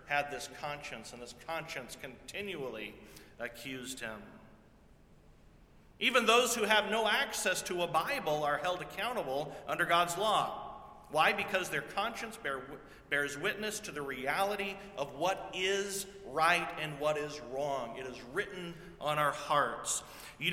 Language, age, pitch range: English, 40-59, 140-200 Hz